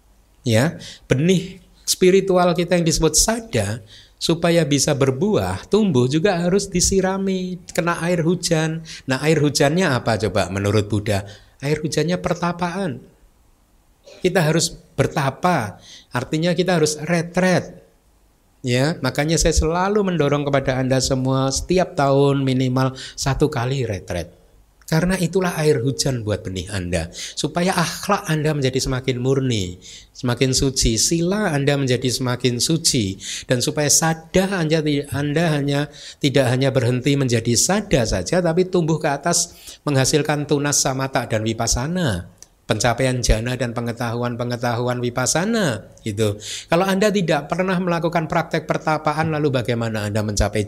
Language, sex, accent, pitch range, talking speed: Indonesian, male, native, 120-170 Hz, 125 wpm